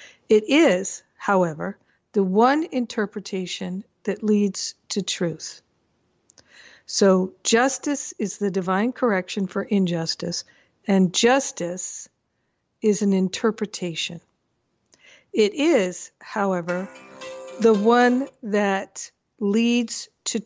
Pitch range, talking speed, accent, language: 190-235 Hz, 90 wpm, American, English